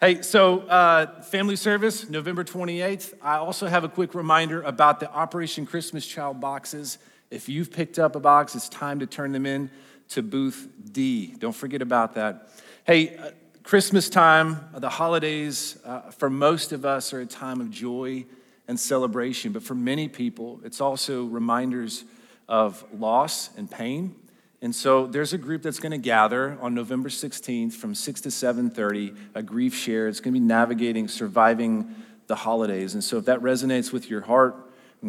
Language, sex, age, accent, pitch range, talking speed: English, male, 40-59, American, 120-165 Hz, 175 wpm